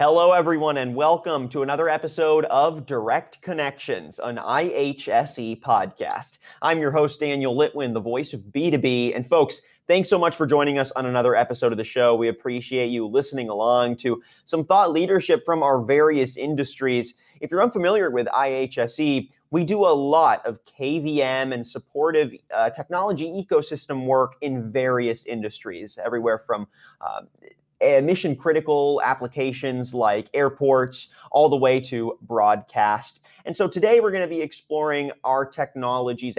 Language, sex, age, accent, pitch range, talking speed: English, male, 30-49, American, 125-155 Hz, 150 wpm